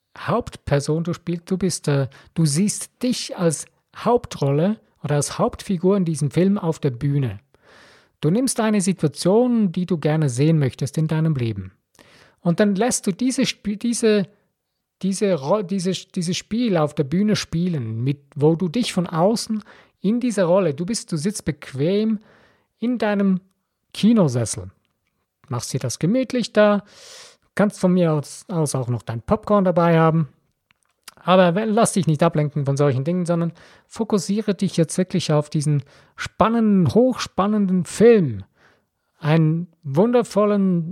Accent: German